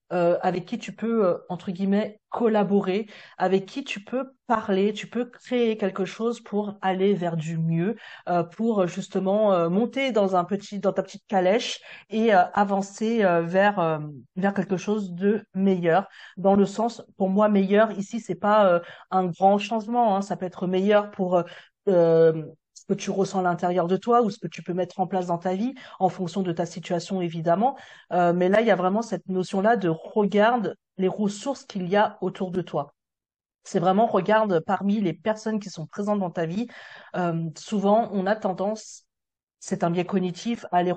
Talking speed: 195 wpm